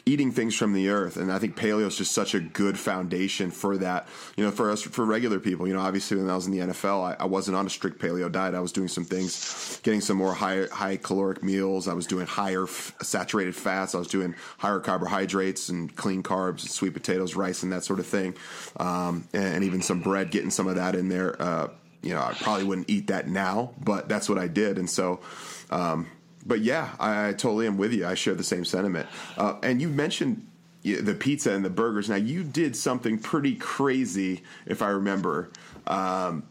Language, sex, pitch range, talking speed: English, male, 95-110 Hz, 225 wpm